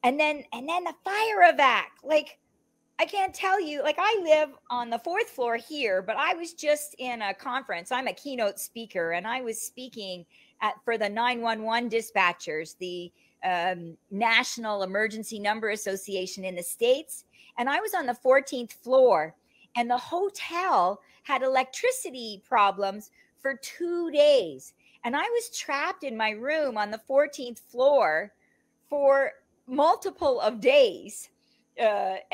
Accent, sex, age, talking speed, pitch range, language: American, female, 40-59, 155 wpm, 220-300 Hz, English